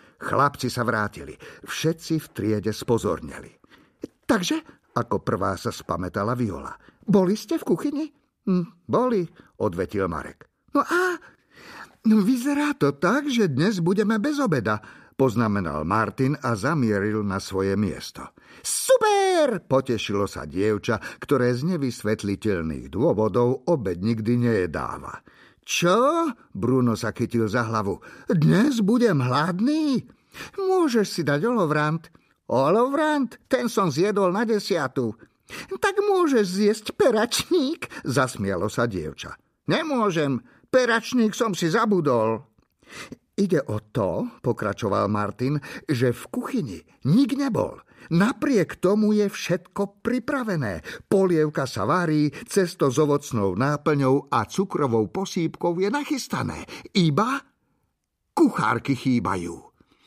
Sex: male